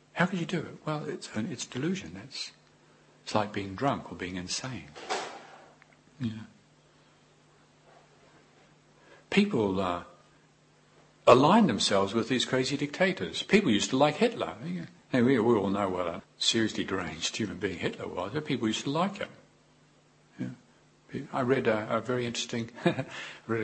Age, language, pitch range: 60-79, English, 105-135 Hz